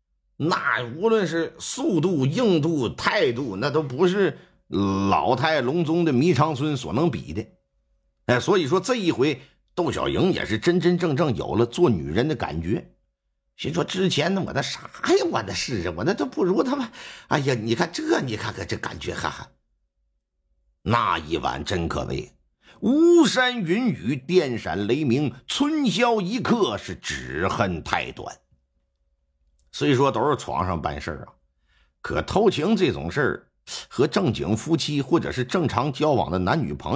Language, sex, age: Chinese, male, 50-69